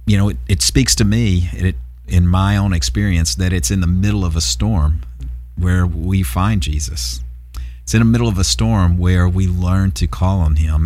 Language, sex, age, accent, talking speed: English, male, 50-69, American, 205 wpm